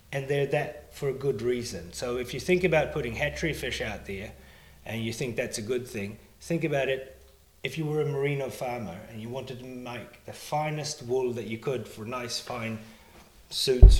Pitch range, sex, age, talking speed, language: 110-140 Hz, male, 30-49, 205 wpm, English